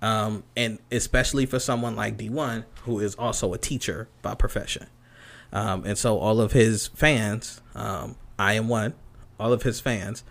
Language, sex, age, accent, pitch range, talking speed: English, male, 30-49, American, 110-125 Hz, 170 wpm